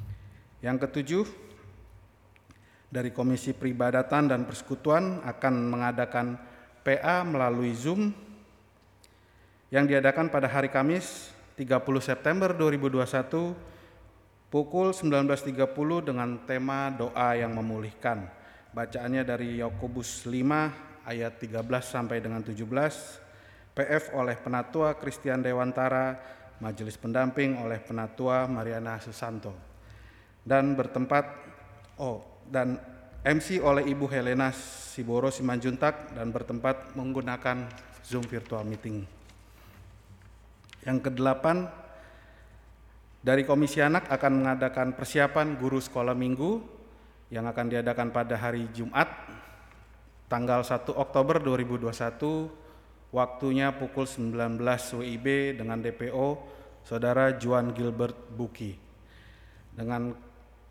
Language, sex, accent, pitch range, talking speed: Indonesian, male, native, 115-135 Hz, 95 wpm